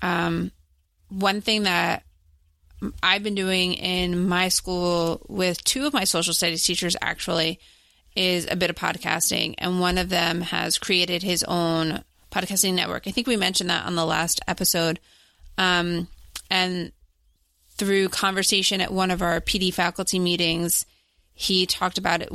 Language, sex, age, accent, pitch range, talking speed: English, female, 20-39, American, 165-185 Hz, 155 wpm